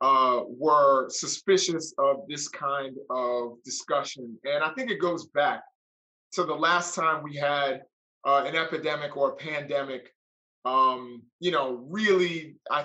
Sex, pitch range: male, 140-180 Hz